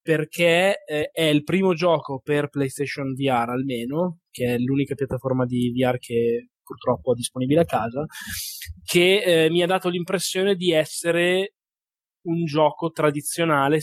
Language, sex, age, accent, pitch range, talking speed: Italian, male, 20-39, native, 135-165 Hz, 145 wpm